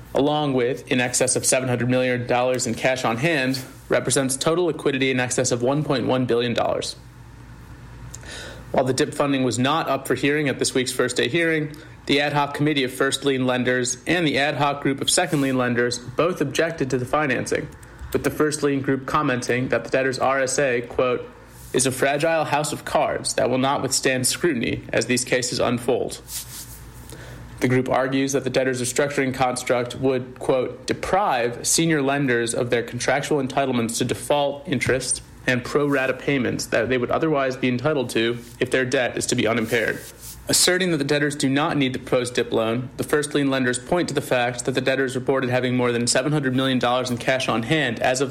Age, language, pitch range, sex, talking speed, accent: 30-49, English, 125-145 Hz, male, 190 wpm, American